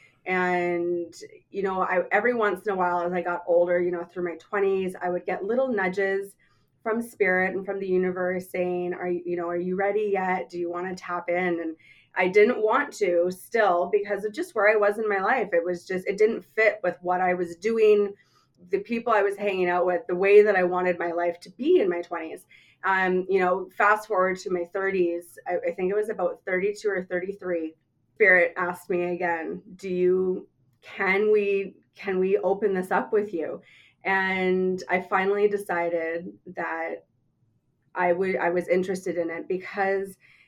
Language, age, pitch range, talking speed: English, 20-39, 175-200 Hz, 200 wpm